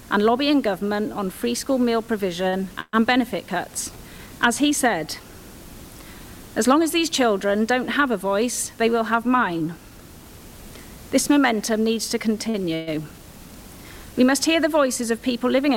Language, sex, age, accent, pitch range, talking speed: English, female, 40-59, British, 200-255 Hz, 150 wpm